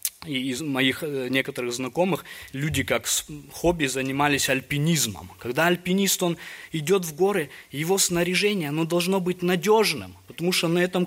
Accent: native